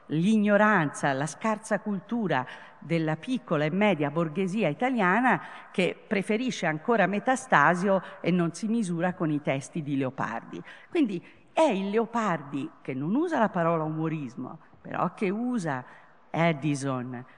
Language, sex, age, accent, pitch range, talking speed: Italian, female, 50-69, native, 145-220 Hz, 130 wpm